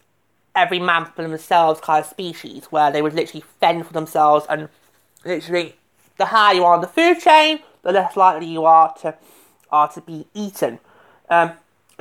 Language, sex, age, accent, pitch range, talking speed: English, male, 20-39, British, 160-240 Hz, 175 wpm